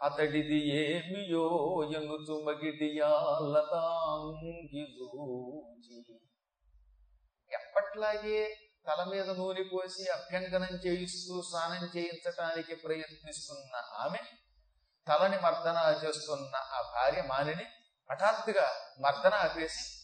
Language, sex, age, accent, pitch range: Telugu, male, 30-49, native, 155-235 Hz